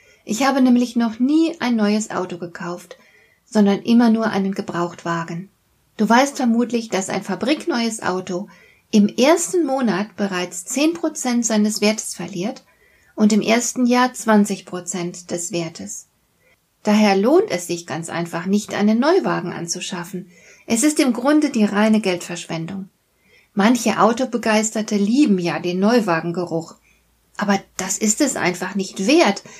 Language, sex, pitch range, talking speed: German, female, 185-235 Hz, 135 wpm